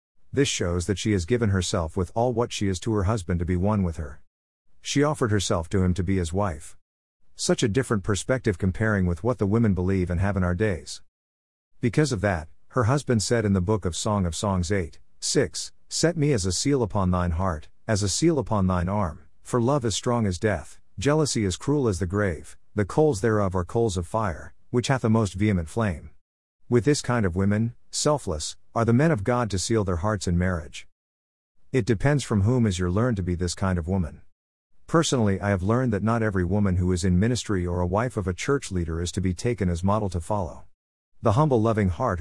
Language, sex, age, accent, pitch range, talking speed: English, male, 50-69, American, 90-115 Hz, 225 wpm